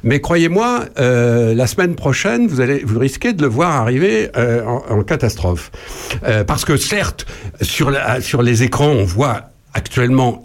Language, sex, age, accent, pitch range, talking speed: French, male, 60-79, French, 115-150 Hz, 170 wpm